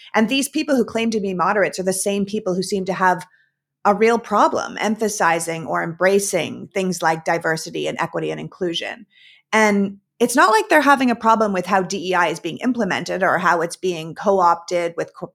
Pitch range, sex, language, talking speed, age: 175-220 Hz, female, English, 195 wpm, 30-49